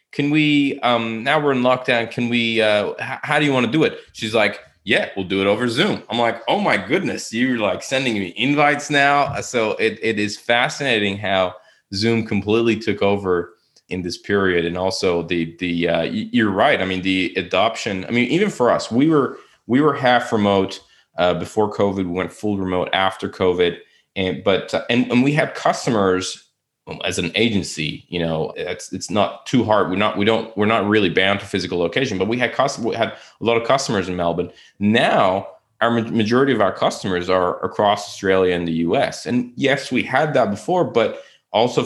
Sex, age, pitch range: male, 20-39, 90-120 Hz